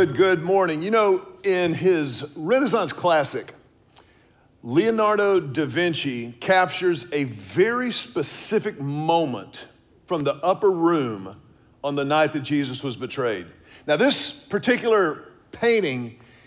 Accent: American